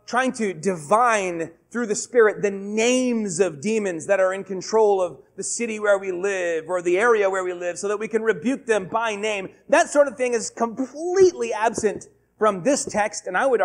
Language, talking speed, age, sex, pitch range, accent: English, 205 wpm, 30-49, male, 195-255 Hz, American